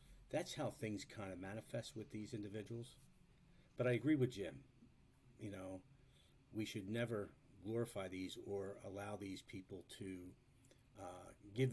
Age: 50-69